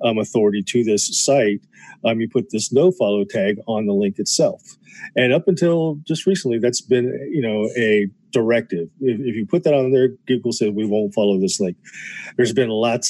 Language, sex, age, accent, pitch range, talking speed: English, male, 40-59, American, 105-145 Hz, 200 wpm